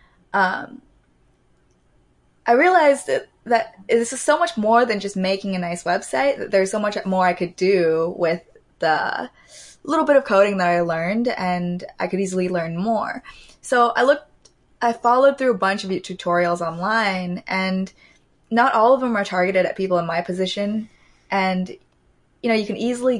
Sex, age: female, 20-39